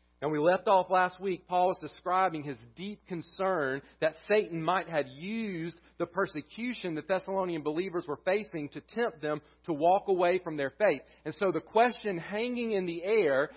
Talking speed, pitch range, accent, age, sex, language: 180 wpm, 145-195 Hz, American, 40-59, male, English